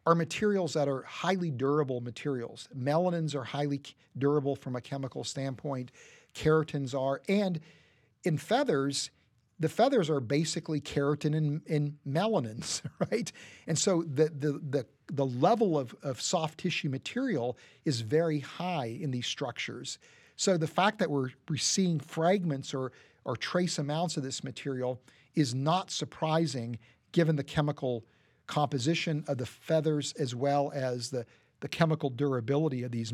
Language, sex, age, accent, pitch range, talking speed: English, male, 50-69, American, 135-165 Hz, 145 wpm